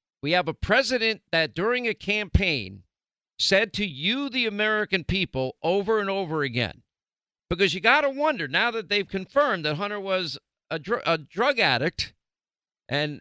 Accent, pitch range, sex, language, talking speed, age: American, 155-215 Hz, male, English, 160 wpm, 50-69